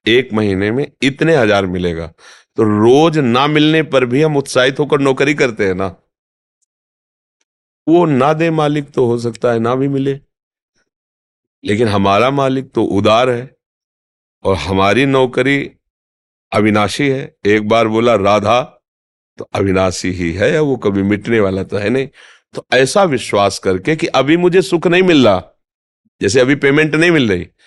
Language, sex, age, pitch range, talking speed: Hindi, male, 40-59, 95-140 Hz, 160 wpm